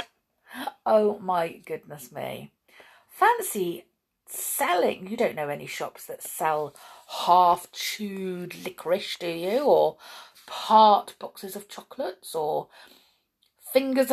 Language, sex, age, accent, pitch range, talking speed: English, female, 40-59, British, 175-265 Hz, 105 wpm